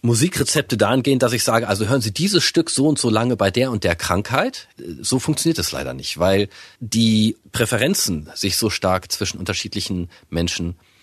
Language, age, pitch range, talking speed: German, 40-59, 95-135 Hz, 180 wpm